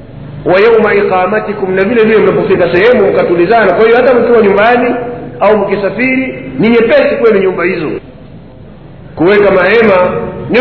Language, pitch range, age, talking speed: Swahili, 180-230 Hz, 50-69, 130 wpm